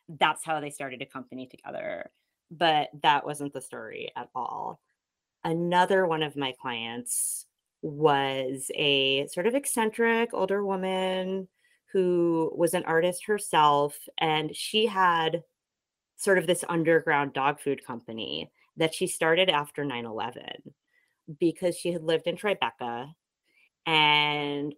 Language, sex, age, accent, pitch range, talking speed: English, female, 30-49, American, 140-180 Hz, 130 wpm